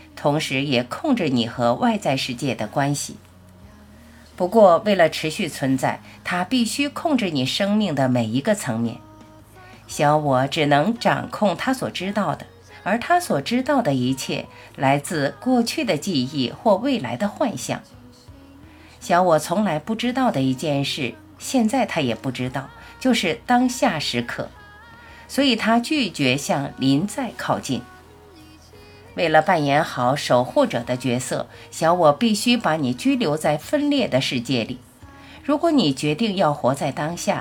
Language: Chinese